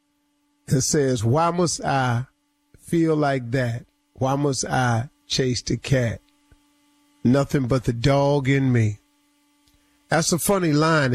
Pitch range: 125-175 Hz